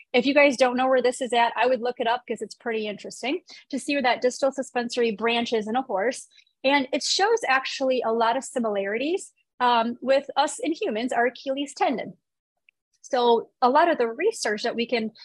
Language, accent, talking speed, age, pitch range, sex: English, American, 210 wpm, 30-49, 225-275 Hz, female